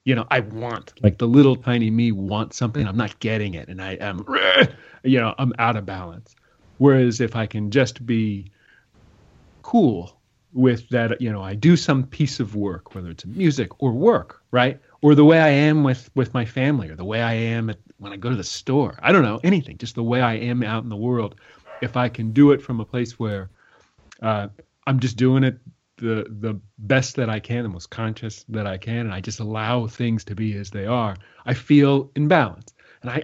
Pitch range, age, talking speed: 105-130 Hz, 40-59, 220 wpm